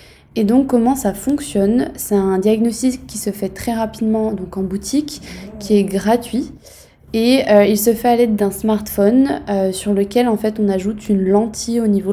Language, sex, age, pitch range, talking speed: French, female, 20-39, 200-230 Hz, 195 wpm